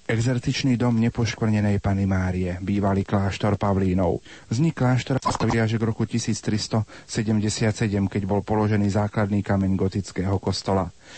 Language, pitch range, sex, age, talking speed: Slovak, 95-115 Hz, male, 40-59, 115 wpm